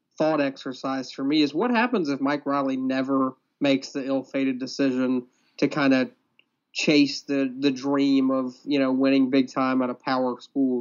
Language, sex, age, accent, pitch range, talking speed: English, male, 30-49, American, 130-145 Hz, 180 wpm